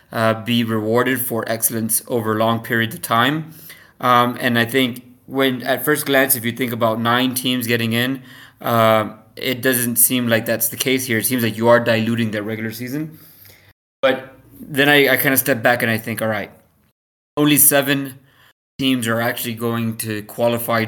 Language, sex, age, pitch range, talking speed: English, male, 20-39, 115-130 Hz, 190 wpm